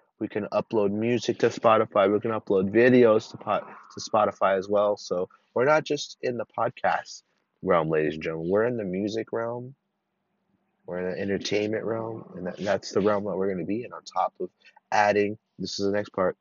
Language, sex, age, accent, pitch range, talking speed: English, male, 30-49, American, 115-165 Hz, 210 wpm